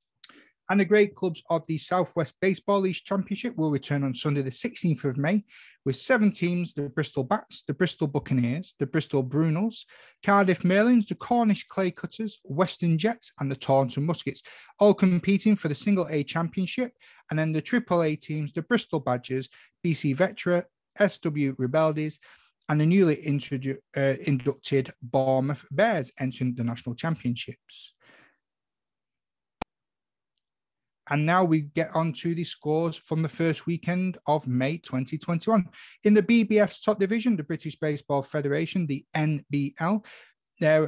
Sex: male